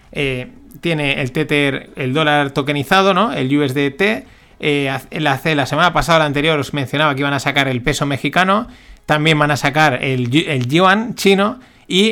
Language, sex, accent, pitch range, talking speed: Spanish, male, Spanish, 140-180 Hz, 175 wpm